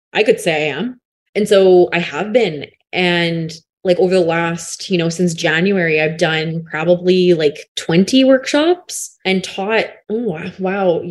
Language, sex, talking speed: English, female, 150 wpm